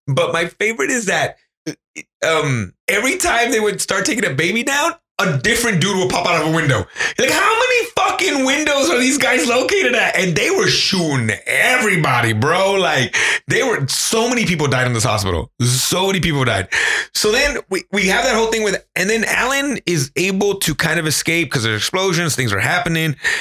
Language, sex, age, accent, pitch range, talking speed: English, male, 30-49, American, 145-235 Hz, 200 wpm